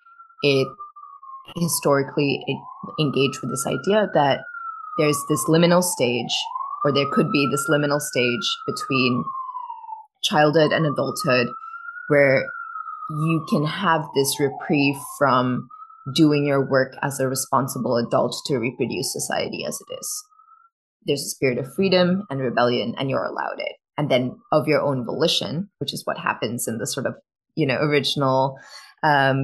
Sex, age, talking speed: female, 20-39, 145 wpm